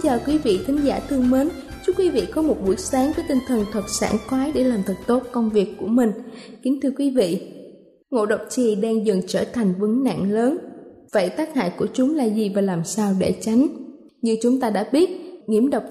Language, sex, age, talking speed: Vietnamese, female, 20-39, 230 wpm